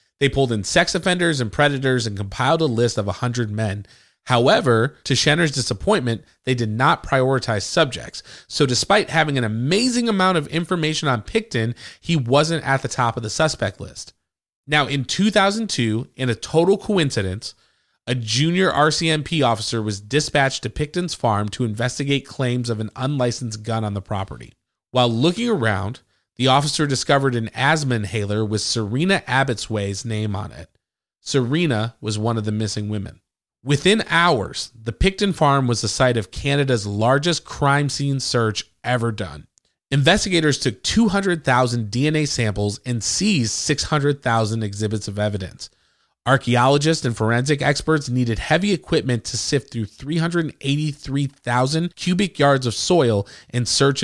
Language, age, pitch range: English, 30-49, 110-150 Hz